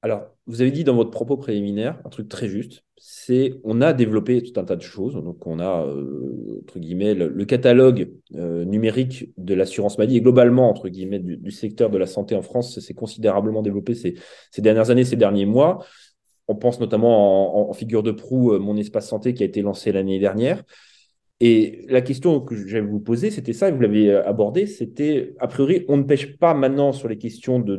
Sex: male